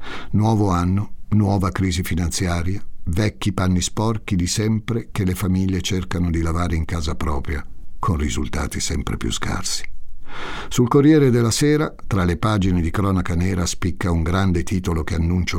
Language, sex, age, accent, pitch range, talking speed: Italian, male, 60-79, native, 85-110 Hz, 155 wpm